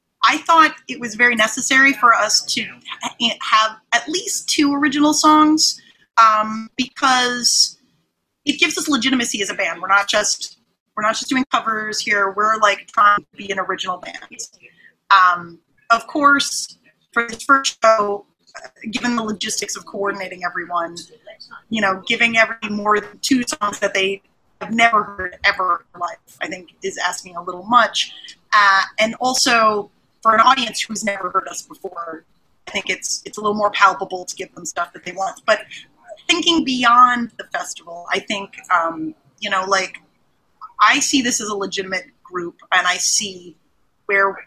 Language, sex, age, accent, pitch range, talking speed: English, female, 30-49, American, 190-250 Hz, 170 wpm